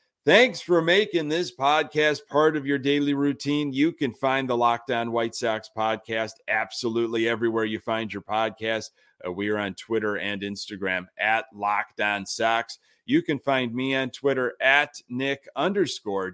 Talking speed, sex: 160 wpm, male